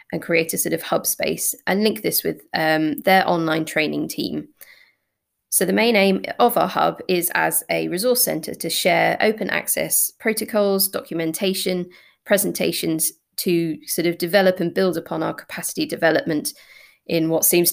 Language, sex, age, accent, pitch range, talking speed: English, female, 20-39, British, 160-190 Hz, 165 wpm